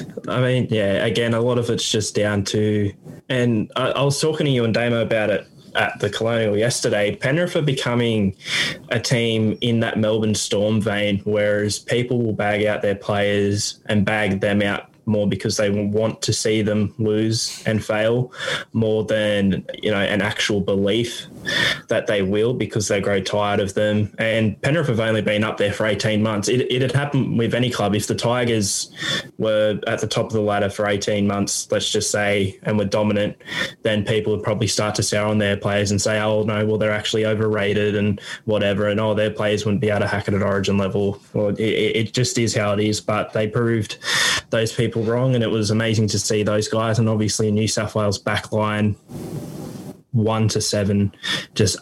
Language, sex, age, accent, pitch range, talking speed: English, male, 10-29, Australian, 105-115 Hz, 205 wpm